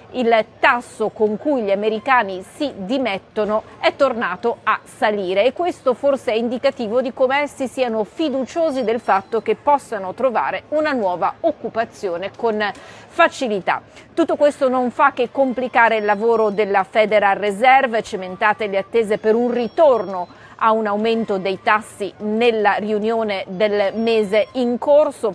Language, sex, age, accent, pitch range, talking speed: Italian, female, 40-59, native, 200-250 Hz, 140 wpm